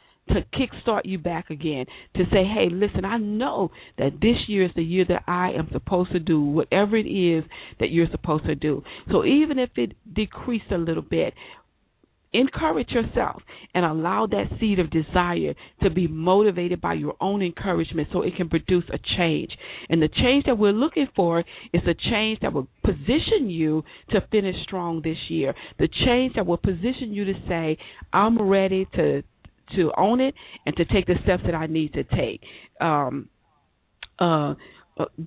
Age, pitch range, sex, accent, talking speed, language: 50-69, 165-210 Hz, female, American, 180 wpm, English